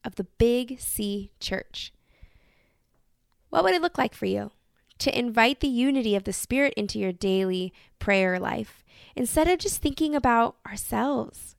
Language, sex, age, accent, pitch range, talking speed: English, female, 20-39, American, 200-250 Hz, 155 wpm